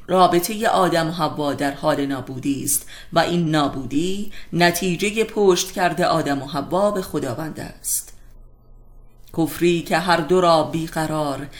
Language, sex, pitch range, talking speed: Persian, female, 145-185 Hz, 135 wpm